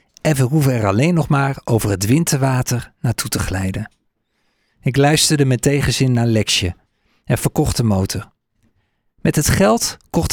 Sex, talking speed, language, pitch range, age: male, 155 wpm, Dutch, 110-145 Hz, 50-69